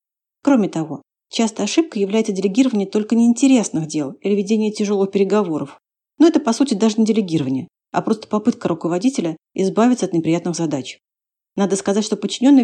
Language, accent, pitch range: Russian, native, 175-230 Hz